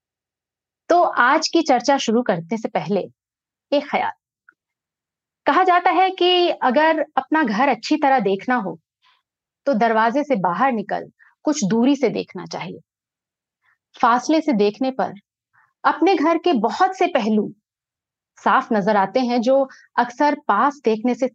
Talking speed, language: 140 wpm, Hindi